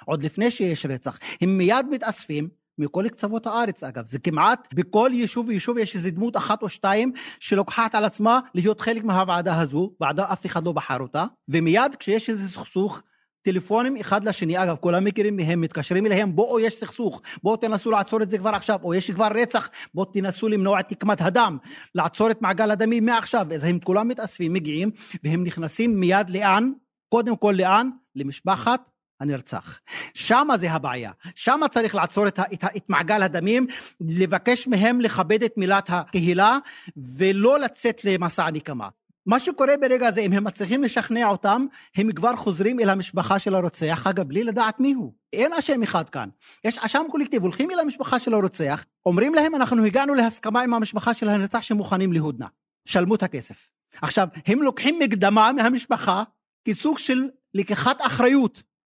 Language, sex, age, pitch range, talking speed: Hebrew, male, 40-59, 185-235 Hz, 160 wpm